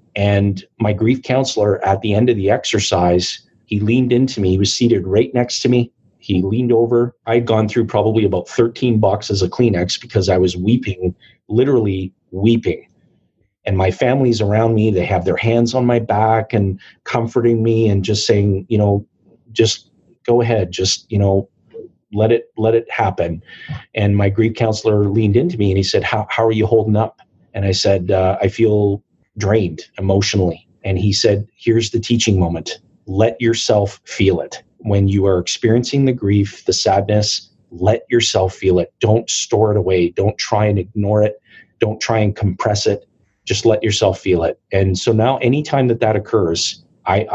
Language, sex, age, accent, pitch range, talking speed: English, male, 30-49, American, 100-115 Hz, 185 wpm